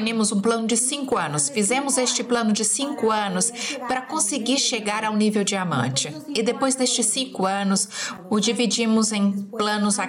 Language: English